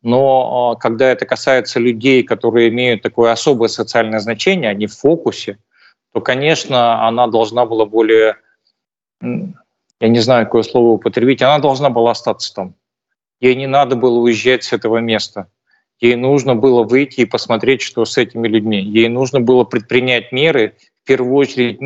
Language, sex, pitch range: Russian, male, 115-135 Hz